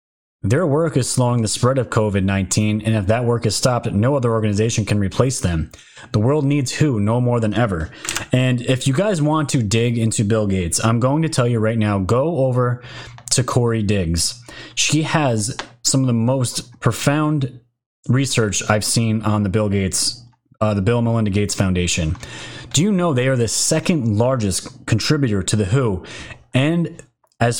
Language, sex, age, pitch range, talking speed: English, male, 30-49, 105-130 Hz, 185 wpm